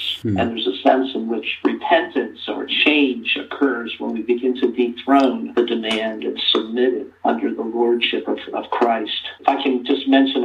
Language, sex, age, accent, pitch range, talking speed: English, male, 50-69, American, 120-145 Hz, 170 wpm